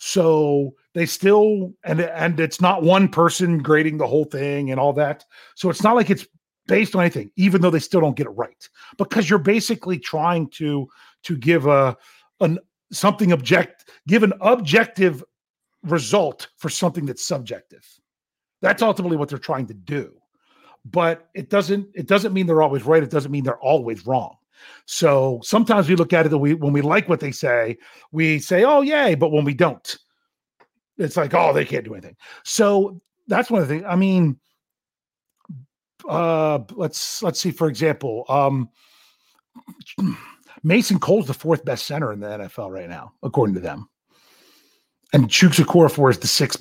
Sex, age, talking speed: male, 40-59, 180 wpm